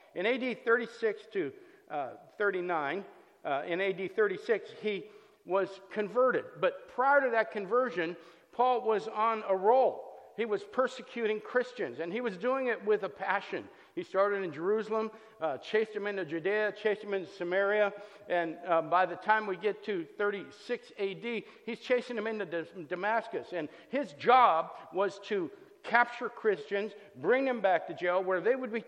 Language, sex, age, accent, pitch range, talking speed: English, male, 50-69, American, 185-240 Hz, 165 wpm